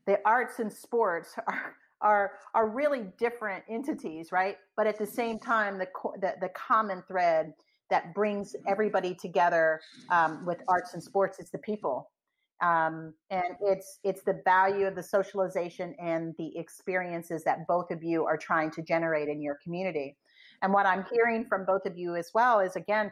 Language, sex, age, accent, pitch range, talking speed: English, female, 40-59, American, 175-215 Hz, 180 wpm